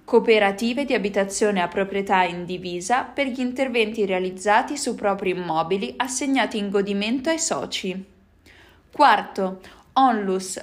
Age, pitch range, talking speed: 20-39, 190-240 Hz, 115 wpm